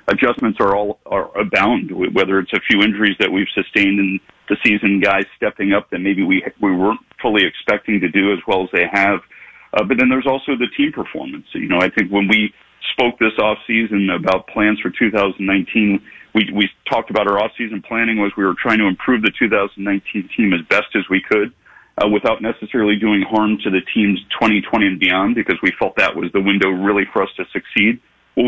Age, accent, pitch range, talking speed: 40-59, American, 100-115 Hz, 215 wpm